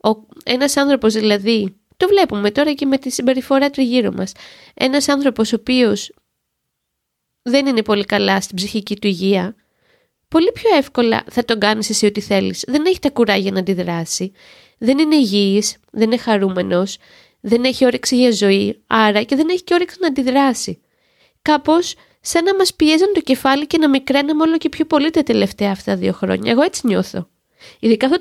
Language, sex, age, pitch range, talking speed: Greek, female, 20-39, 210-285 Hz, 175 wpm